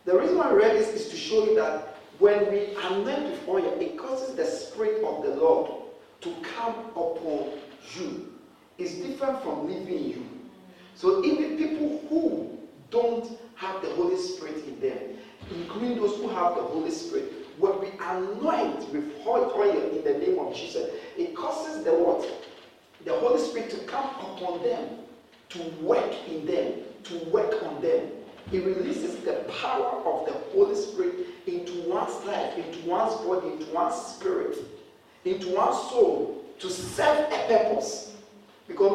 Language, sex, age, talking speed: English, male, 50-69, 160 wpm